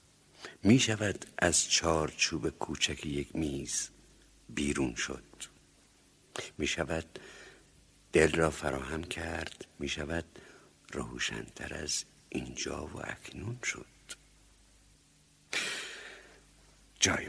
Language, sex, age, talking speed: Persian, male, 60-79, 75 wpm